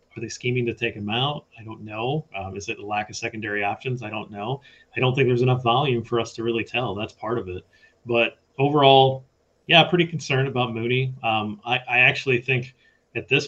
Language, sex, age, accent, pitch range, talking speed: English, male, 30-49, American, 105-120 Hz, 225 wpm